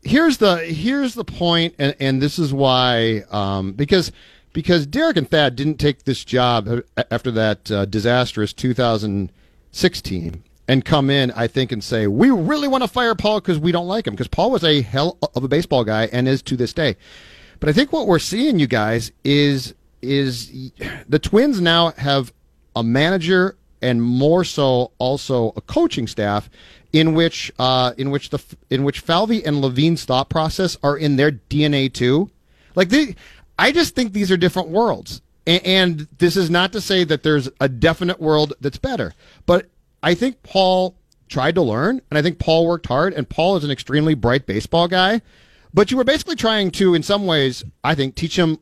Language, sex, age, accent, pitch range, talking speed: English, male, 40-59, American, 125-180 Hz, 190 wpm